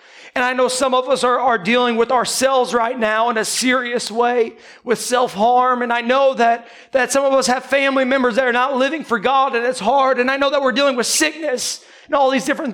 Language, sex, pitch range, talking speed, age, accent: English, male, 225-265 Hz, 240 wpm, 40-59, American